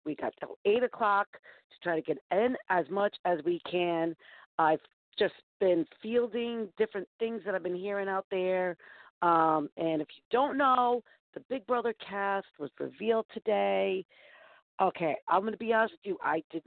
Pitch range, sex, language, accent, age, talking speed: 160-220 Hz, female, English, American, 40-59, 180 wpm